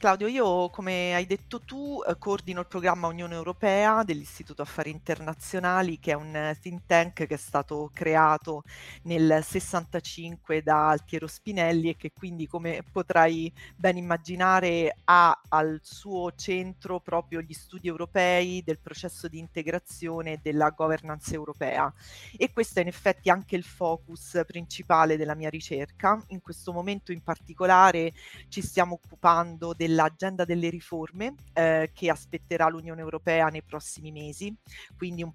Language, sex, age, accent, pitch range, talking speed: Italian, female, 30-49, native, 155-180 Hz, 145 wpm